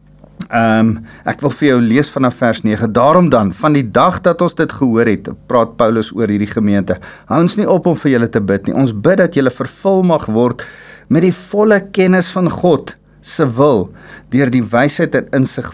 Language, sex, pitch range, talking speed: English, male, 110-155 Hz, 205 wpm